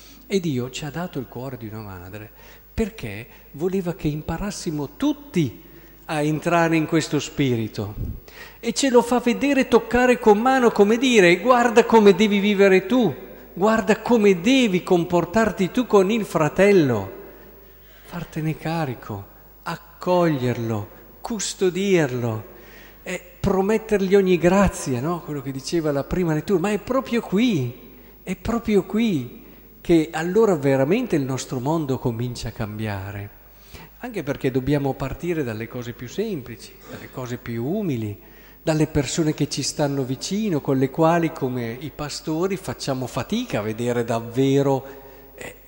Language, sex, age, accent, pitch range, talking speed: Italian, male, 50-69, native, 130-195 Hz, 135 wpm